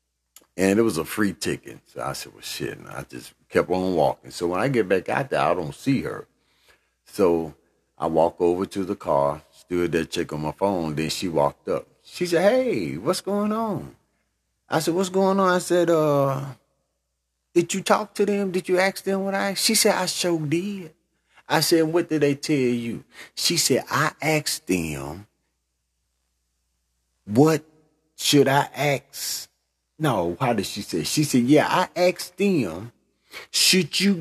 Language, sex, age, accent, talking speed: English, male, 40-59, American, 185 wpm